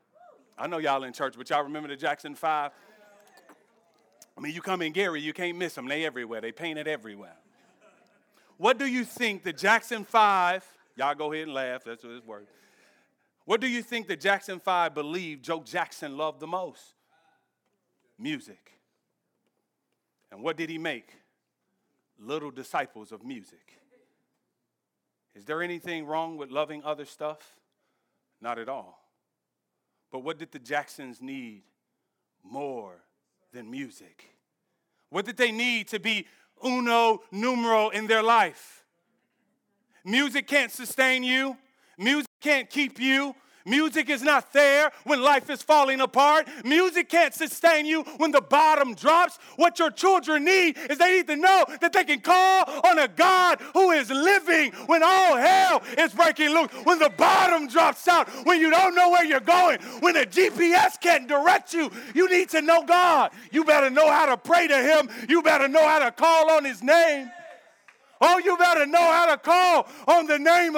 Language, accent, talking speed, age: English, American, 165 wpm, 40-59